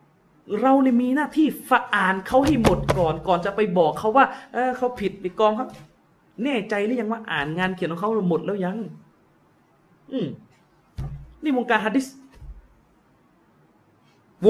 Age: 30-49